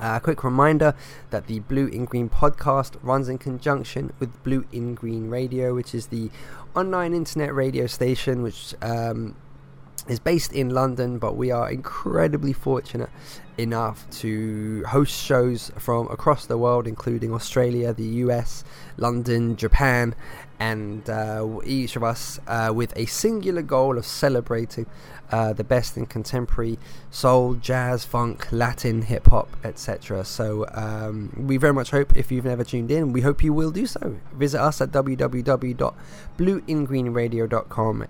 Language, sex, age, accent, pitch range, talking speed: English, male, 20-39, British, 115-135 Hz, 145 wpm